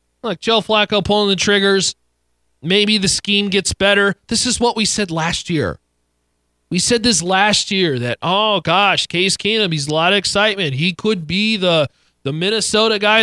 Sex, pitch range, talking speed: male, 175-240 Hz, 180 wpm